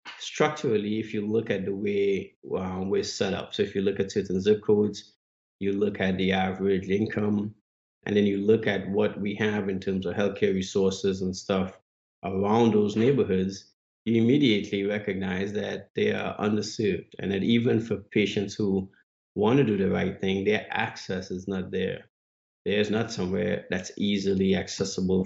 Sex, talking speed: male, 175 wpm